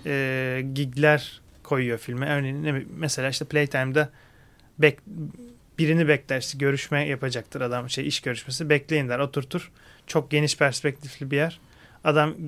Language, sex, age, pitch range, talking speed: Turkish, male, 30-49, 135-155 Hz, 130 wpm